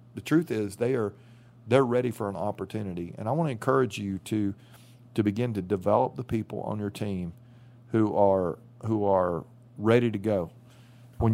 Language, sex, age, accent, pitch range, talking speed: English, male, 40-59, American, 100-120 Hz, 180 wpm